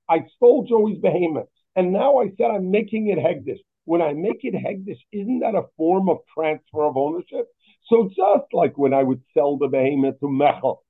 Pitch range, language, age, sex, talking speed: 145-215 Hz, English, 50-69, male, 200 wpm